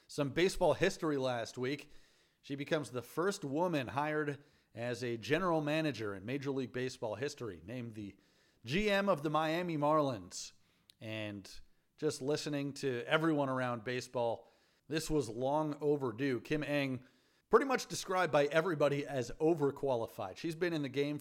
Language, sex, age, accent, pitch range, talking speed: English, male, 40-59, American, 120-150 Hz, 145 wpm